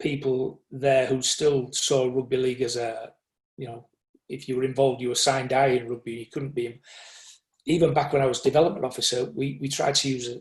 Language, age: English, 40-59